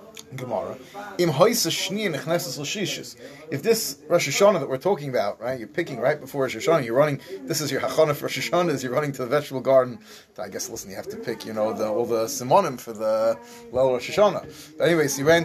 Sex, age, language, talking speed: male, 30-49, English, 210 wpm